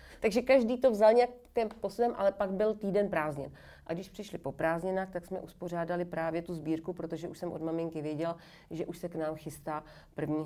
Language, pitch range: Czech, 155-200 Hz